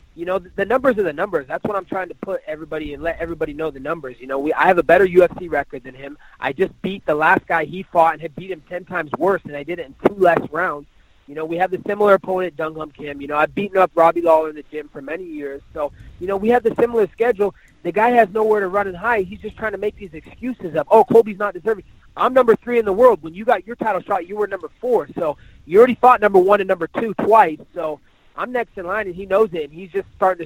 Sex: male